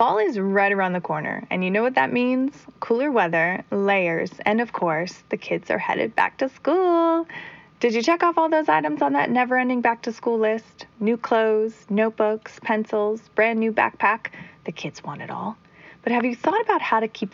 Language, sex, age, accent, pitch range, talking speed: English, female, 30-49, American, 185-235 Hz, 195 wpm